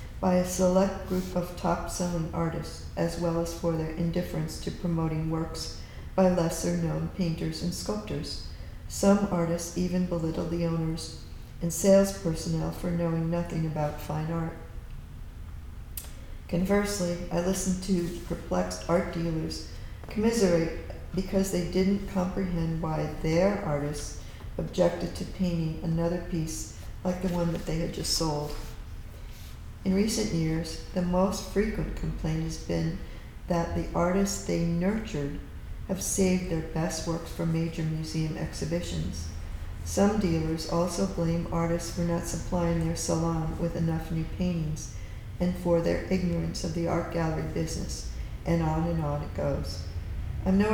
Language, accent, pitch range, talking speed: English, American, 105-175 Hz, 140 wpm